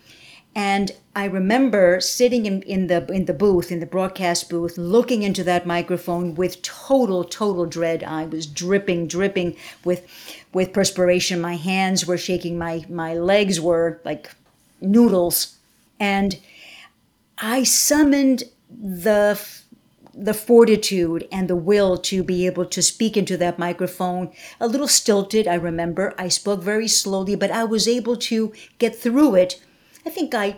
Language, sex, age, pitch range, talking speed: English, female, 50-69, 180-235 Hz, 150 wpm